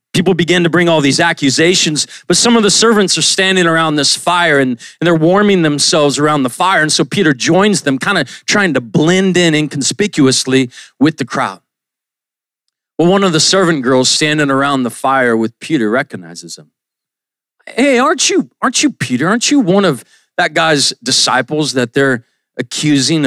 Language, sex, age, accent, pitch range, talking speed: English, male, 40-59, American, 135-215 Hz, 180 wpm